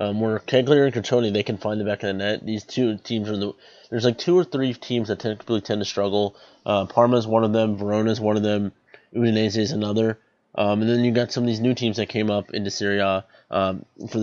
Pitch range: 100-115 Hz